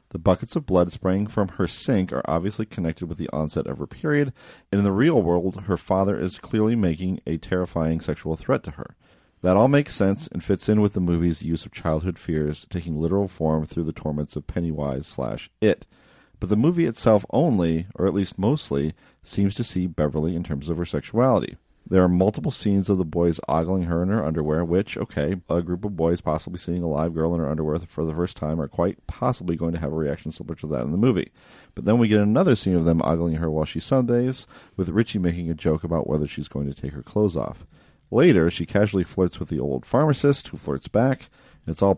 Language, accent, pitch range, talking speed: English, American, 80-100 Hz, 230 wpm